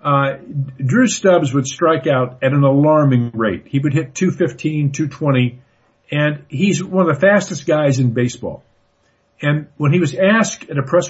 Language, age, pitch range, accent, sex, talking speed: English, 50-69, 125-165 Hz, American, male, 175 wpm